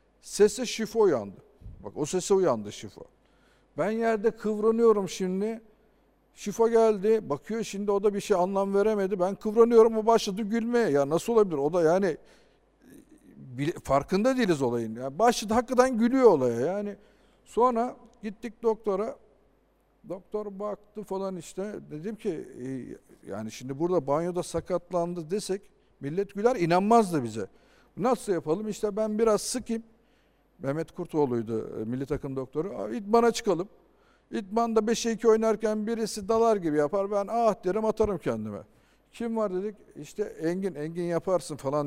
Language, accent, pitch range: Turkish, native, 155-220 Hz